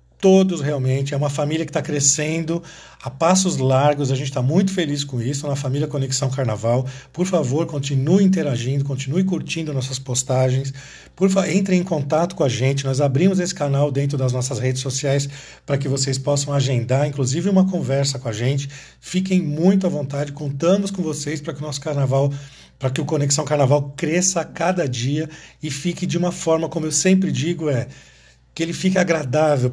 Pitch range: 135-170 Hz